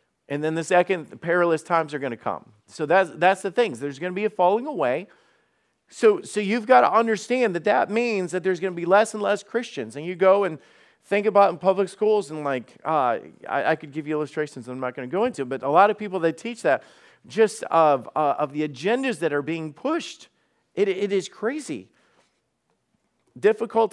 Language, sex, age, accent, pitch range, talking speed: English, male, 50-69, American, 140-200 Hz, 220 wpm